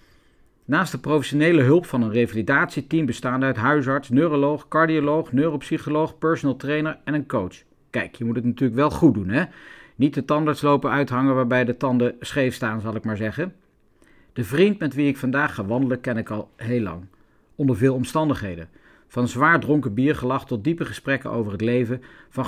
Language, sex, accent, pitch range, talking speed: Dutch, male, Dutch, 120-155 Hz, 180 wpm